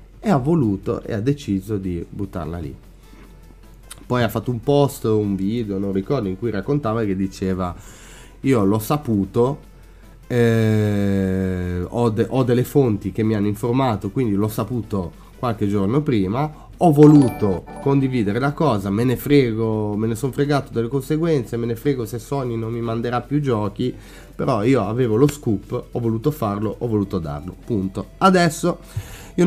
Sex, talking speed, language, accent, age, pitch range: male, 160 wpm, Italian, native, 30-49, 100-125 Hz